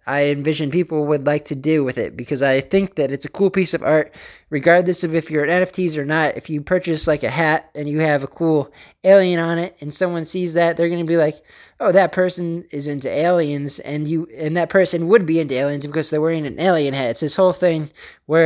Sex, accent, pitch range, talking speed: male, American, 140-170 Hz, 245 wpm